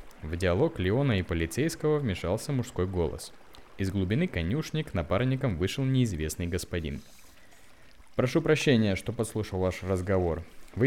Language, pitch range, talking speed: Russian, 90-130 Hz, 125 wpm